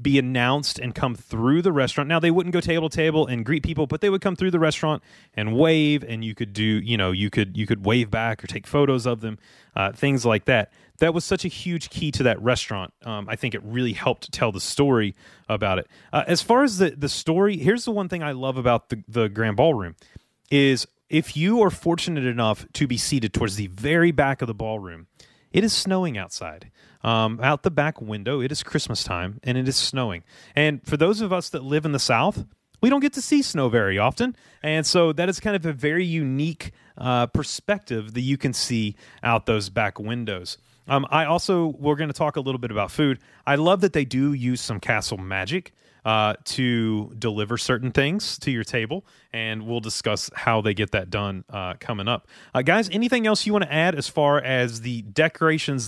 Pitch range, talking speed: 115-165 Hz, 225 wpm